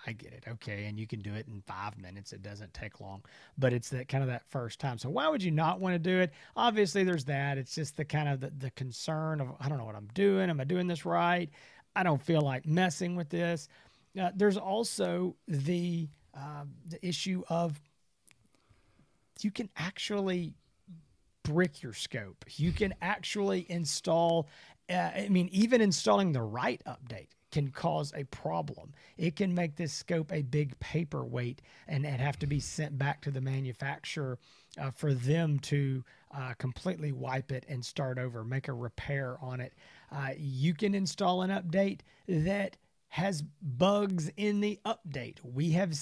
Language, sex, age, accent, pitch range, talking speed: English, male, 40-59, American, 135-180 Hz, 185 wpm